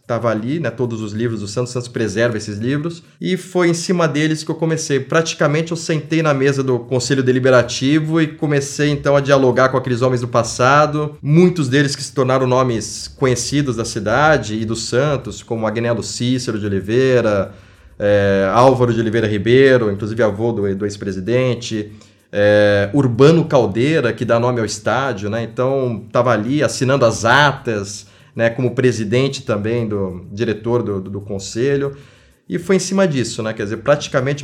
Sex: male